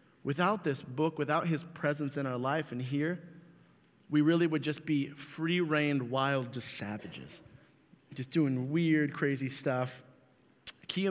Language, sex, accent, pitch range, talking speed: English, male, American, 135-170 Hz, 145 wpm